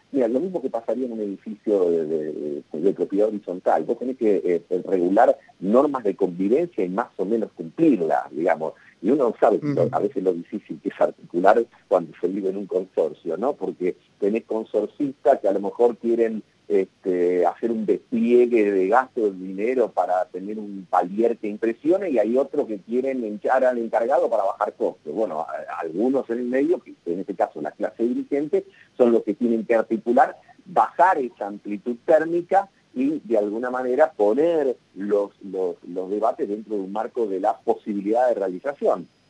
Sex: male